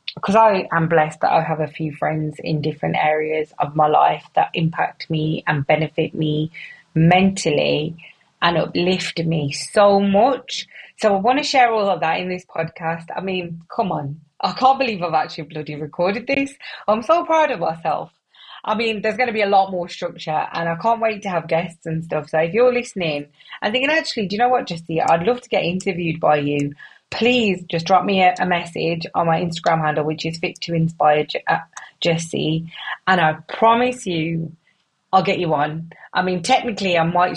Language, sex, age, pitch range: English, female, 20-39, 155-200 Hz